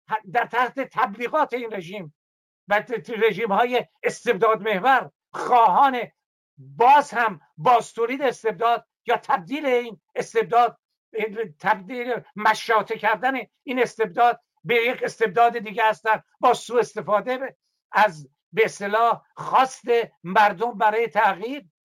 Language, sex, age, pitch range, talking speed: Persian, male, 60-79, 220-275 Hz, 110 wpm